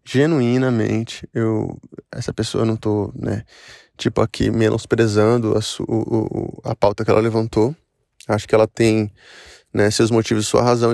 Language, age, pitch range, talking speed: Portuguese, 20-39, 110-125 Hz, 160 wpm